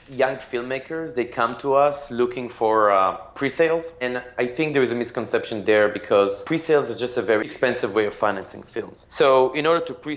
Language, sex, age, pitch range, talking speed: English, male, 30-49, 105-135 Hz, 210 wpm